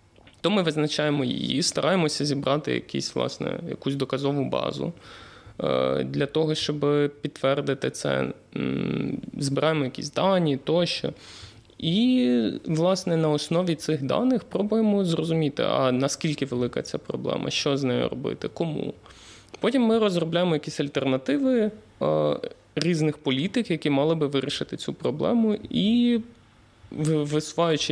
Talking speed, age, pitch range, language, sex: 115 wpm, 20-39, 130-160 Hz, Ukrainian, male